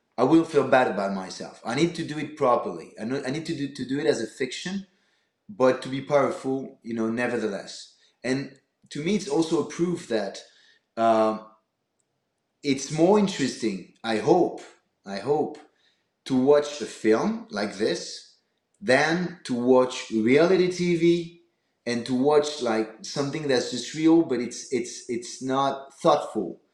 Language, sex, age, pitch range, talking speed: English, male, 30-49, 120-165 Hz, 155 wpm